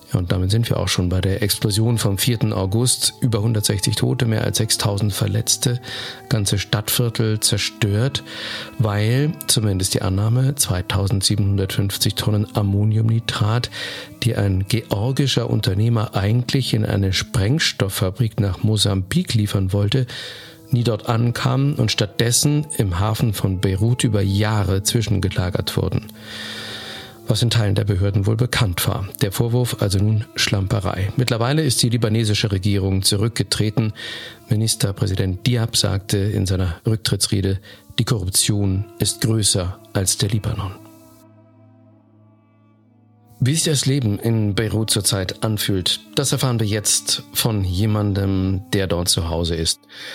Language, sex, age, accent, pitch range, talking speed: German, male, 50-69, German, 100-125 Hz, 125 wpm